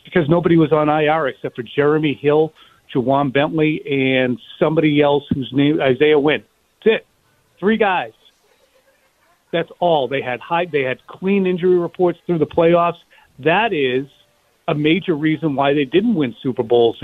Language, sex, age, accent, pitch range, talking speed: English, male, 50-69, American, 135-170 Hz, 160 wpm